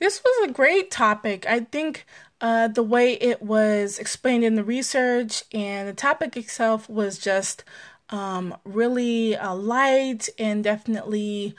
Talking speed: 145 wpm